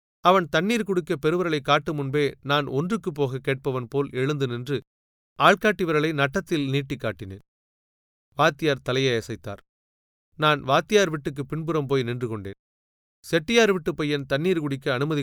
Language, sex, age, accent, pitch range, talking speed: Tamil, male, 30-49, native, 115-160 Hz, 130 wpm